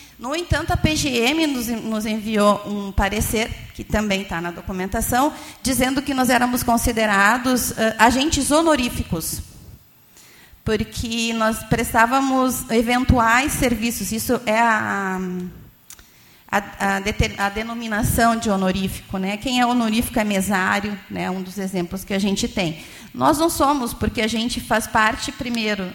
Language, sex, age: Portuguese, female, 30-49